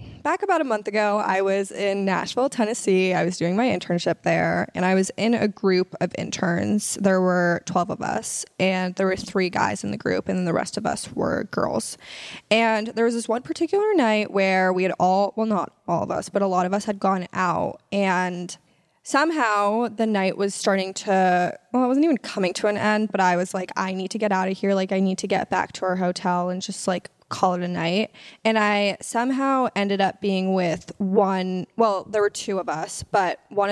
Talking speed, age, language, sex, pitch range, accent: 225 wpm, 10-29, English, female, 185-225 Hz, American